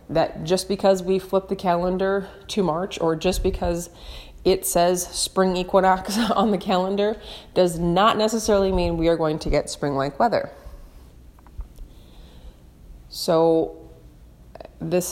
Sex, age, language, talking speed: female, 30-49, English, 125 wpm